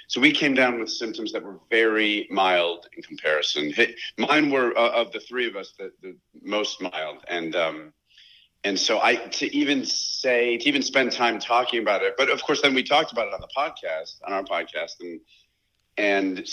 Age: 40-59